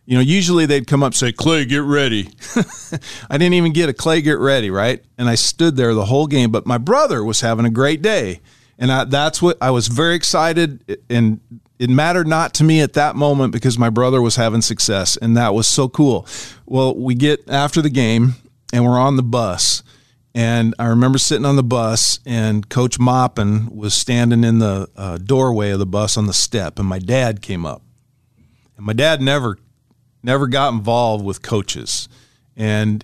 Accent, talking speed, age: American, 205 wpm, 50-69